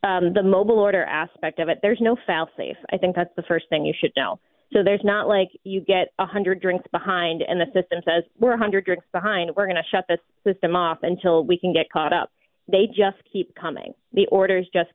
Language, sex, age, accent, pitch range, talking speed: English, female, 20-39, American, 175-205 Hz, 230 wpm